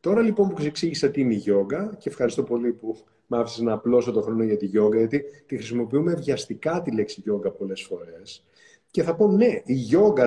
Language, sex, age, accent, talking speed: Greek, male, 30-49, native, 210 wpm